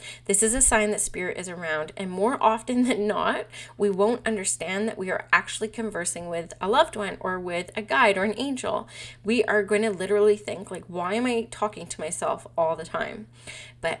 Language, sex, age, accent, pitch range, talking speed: English, female, 20-39, American, 195-235 Hz, 210 wpm